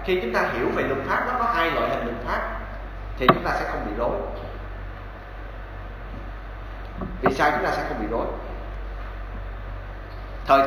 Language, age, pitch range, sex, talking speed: Vietnamese, 20-39, 95-115 Hz, male, 170 wpm